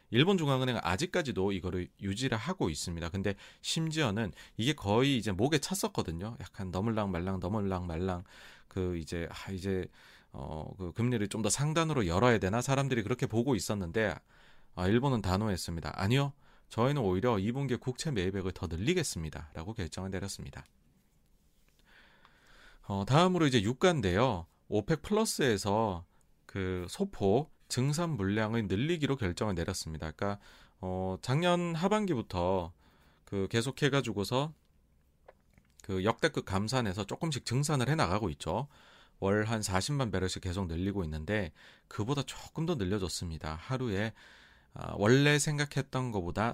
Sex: male